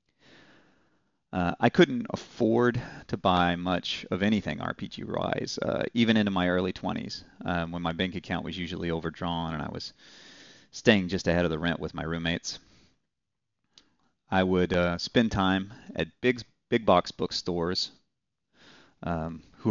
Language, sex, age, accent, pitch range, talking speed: English, male, 30-49, American, 85-105 Hz, 145 wpm